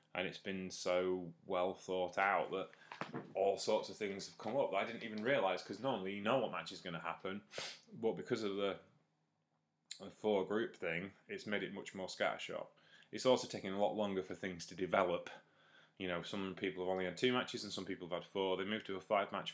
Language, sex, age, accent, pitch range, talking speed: English, male, 20-39, British, 95-120 Hz, 225 wpm